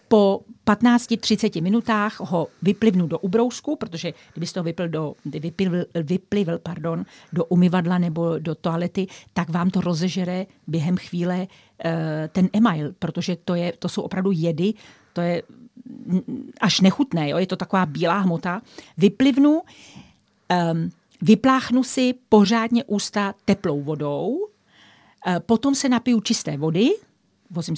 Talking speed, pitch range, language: 125 wpm, 170-225 Hz, Czech